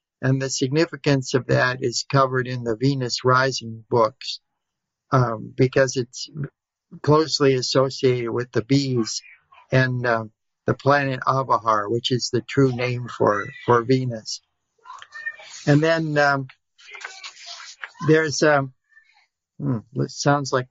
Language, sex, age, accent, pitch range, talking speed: English, male, 60-79, American, 125-145 Hz, 120 wpm